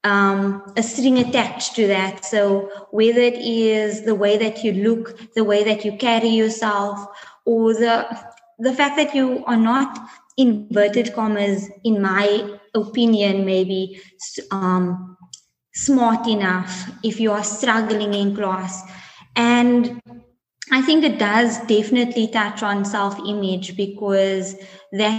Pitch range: 205-245 Hz